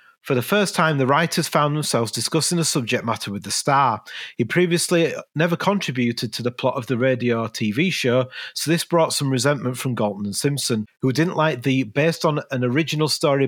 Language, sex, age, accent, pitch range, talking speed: English, male, 40-59, British, 120-155 Hz, 205 wpm